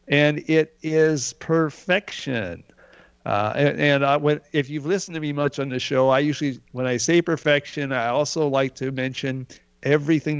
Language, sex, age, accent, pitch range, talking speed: English, male, 50-69, American, 120-150 Hz, 160 wpm